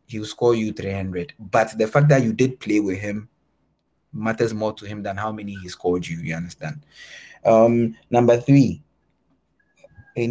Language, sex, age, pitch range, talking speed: English, male, 20-39, 95-135 Hz, 165 wpm